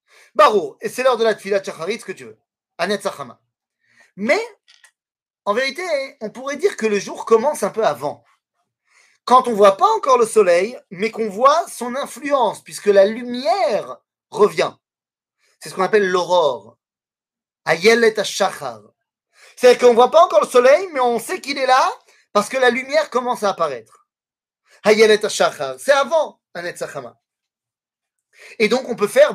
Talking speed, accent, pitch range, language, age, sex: 175 wpm, French, 195-280 Hz, French, 30-49, male